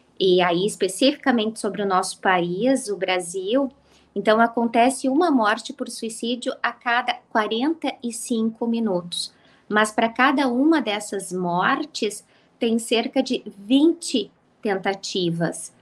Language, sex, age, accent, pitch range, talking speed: Portuguese, female, 20-39, Brazilian, 200-245 Hz, 115 wpm